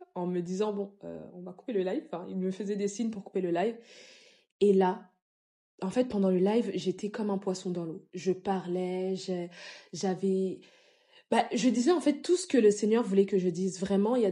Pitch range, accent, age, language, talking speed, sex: 180-210 Hz, French, 20-39, French, 230 wpm, female